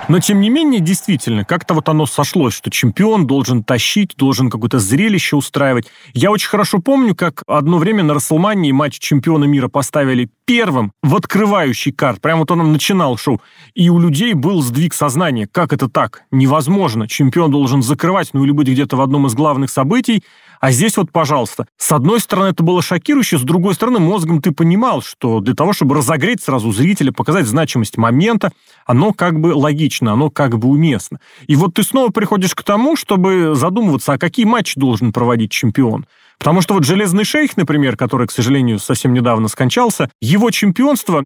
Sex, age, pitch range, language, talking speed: male, 30-49, 135-200 Hz, Russian, 180 wpm